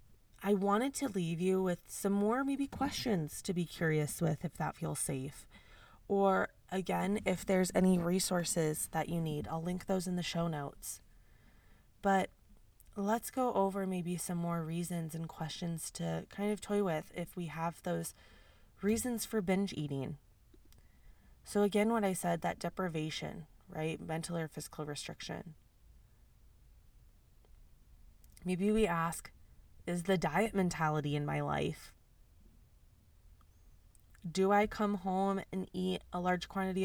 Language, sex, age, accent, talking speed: English, female, 20-39, American, 145 wpm